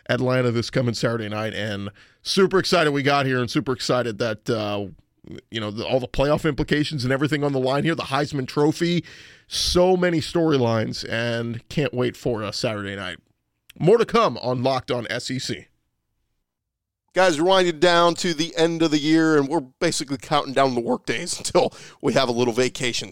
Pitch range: 125-150 Hz